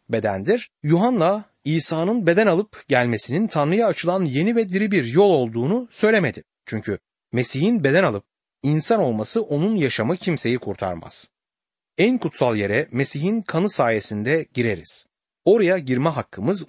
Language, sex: Turkish, male